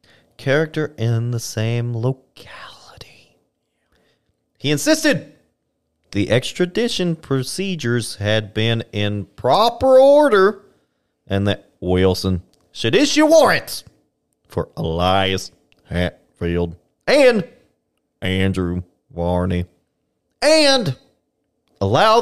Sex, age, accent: male, 30-49, American